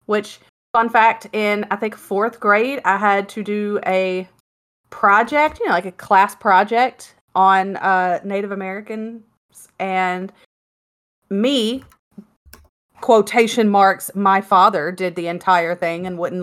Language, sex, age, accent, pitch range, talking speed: English, female, 30-49, American, 190-235 Hz, 130 wpm